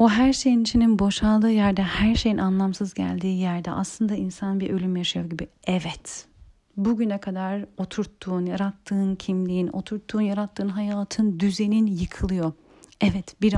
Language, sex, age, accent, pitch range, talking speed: Turkish, female, 40-59, native, 190-230 Hz, 135 wpm